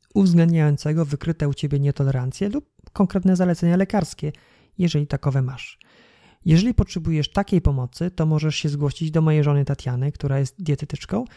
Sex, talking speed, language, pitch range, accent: male, 145 wpm, Polish, 140-175 Hz, native